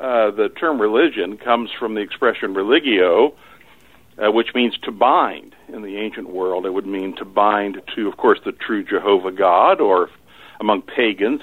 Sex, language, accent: male, English, American